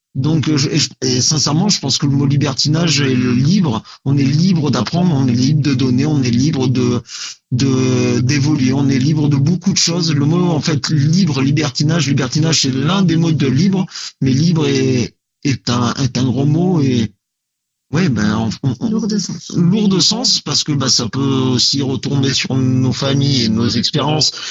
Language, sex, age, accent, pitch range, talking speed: French, male, 50-69, French, 130-150 Hz, 185 wpm